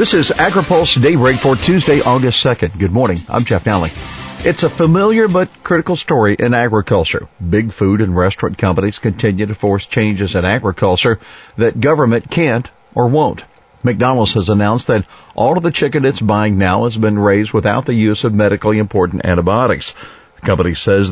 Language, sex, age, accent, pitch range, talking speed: English, male, 50-69, American, 100-125 Hz, 175 wpm